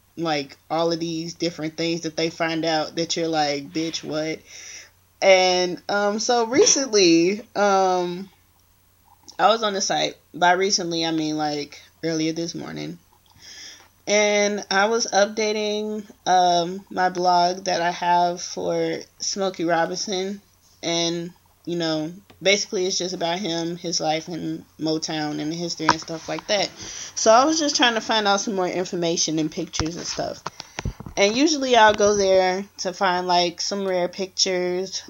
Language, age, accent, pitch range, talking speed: English, 20-39, American, 160-195 Hz, 155 wpm